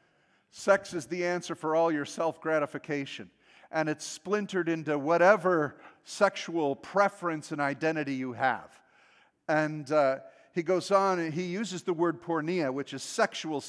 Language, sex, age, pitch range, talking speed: English, male, 50-69, 140-175 Hz, 145 wpm